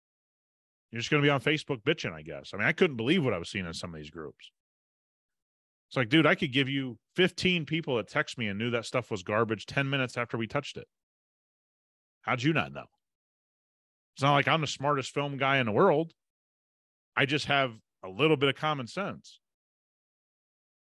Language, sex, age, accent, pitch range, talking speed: English, male, 30-49, American, 105-145 Hz, 210 wpm